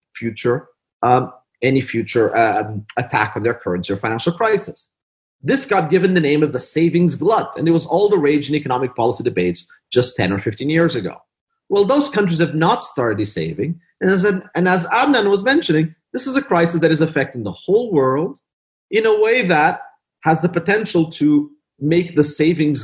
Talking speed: 185 wpm